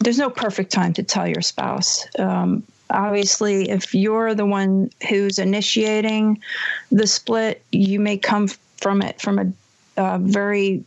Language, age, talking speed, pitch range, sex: English, 40-59, 150 wpm, 185-215 Hz, female